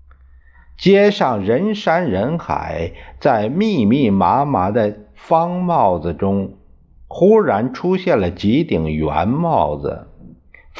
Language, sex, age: Chinese, male, 50-69